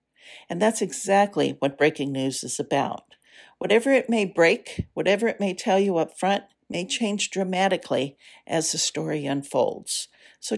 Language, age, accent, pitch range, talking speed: English, 60-79, American, 160-215 Hz, 155 wpm